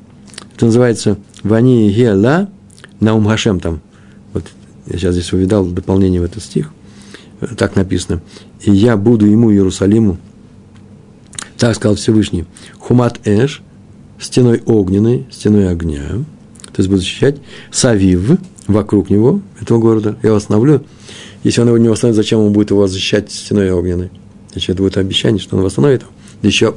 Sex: male